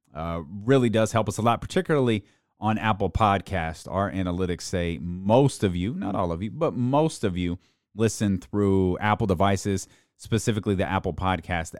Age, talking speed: 30-49, 170 wpm